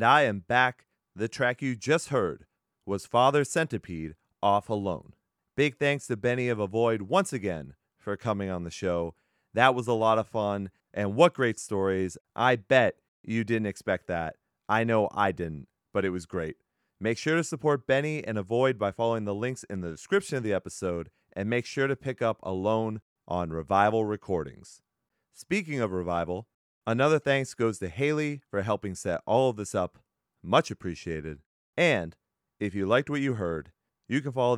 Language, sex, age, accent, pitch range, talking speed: English, male, 30-49, American, 95-125 Hz, 180 wpm